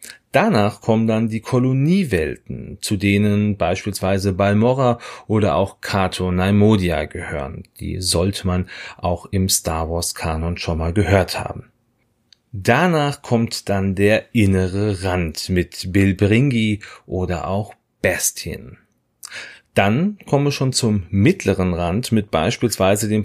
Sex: male